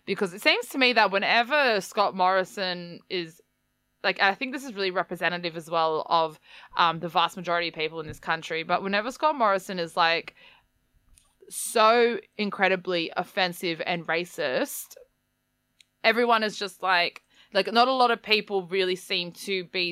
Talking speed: 165 wpm